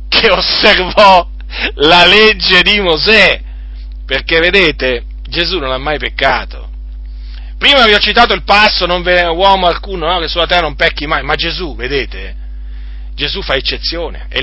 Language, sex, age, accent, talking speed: Italian, male, 40-59, native, 155 wpm